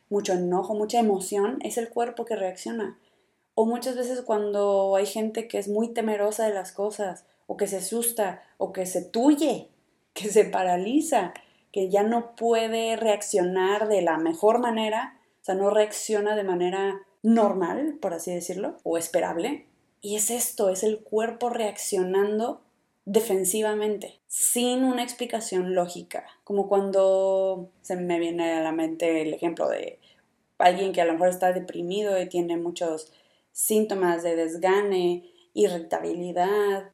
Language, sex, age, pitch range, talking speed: Spanish, female, 20-39, 185-225 Hz, 150 wpm